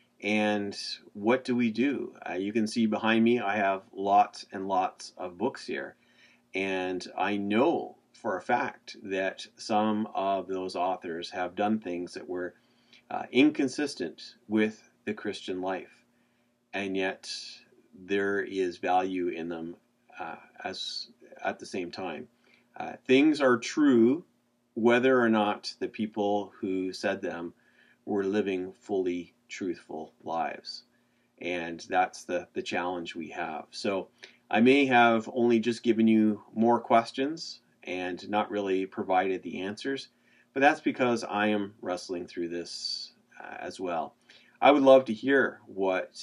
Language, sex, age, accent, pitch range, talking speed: English, male, 40-59, American, 95-120 Hz, 145 wpm